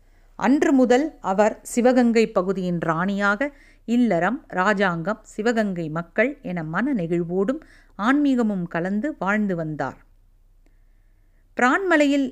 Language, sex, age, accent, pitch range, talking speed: Tamil, female, 50-69, native, 175-245 Hz, 90 wpm